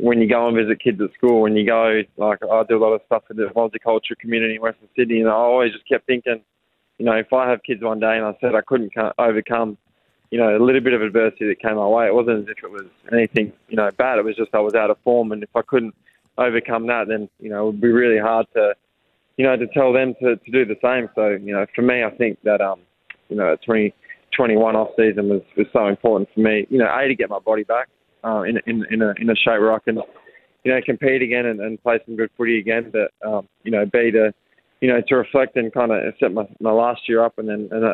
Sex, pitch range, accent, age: male, 110-120 Hz, Australian, 20-39